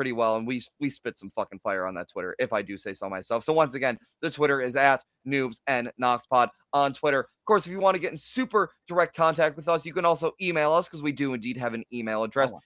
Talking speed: 270 wpm